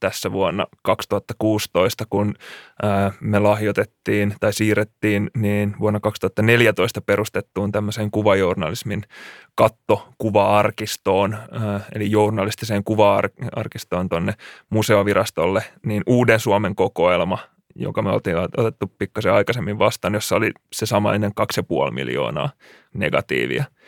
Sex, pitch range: male, 105-110 Hz